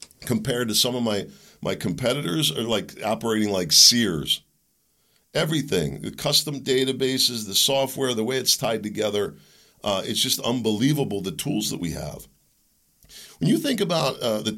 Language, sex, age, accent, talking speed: English, male, 50-69, American, 155 wpm